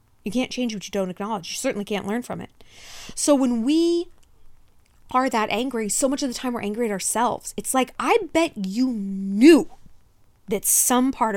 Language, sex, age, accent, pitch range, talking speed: English, female, 20-39, American, 205-280 Hz, 195 wpm